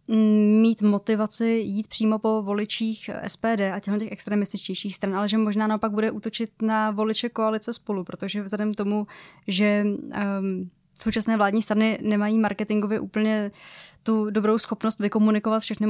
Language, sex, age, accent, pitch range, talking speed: Czech, female, 20-39, native, 205-220 Hz, 145 wpm